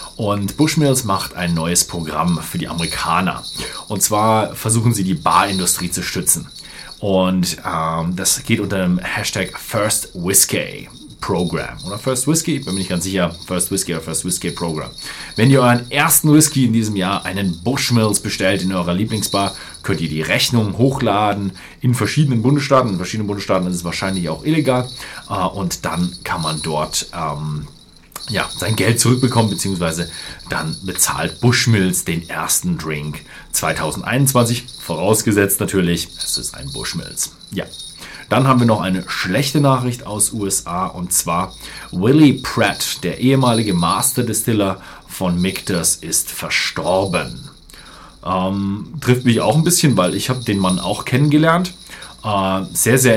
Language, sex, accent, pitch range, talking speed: German, male, German, 90-125 Hz, 150 wpm